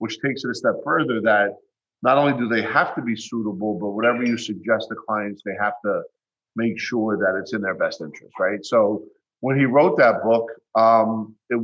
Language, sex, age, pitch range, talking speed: English, male, 40-59, 105-125 Hz, 210 wpm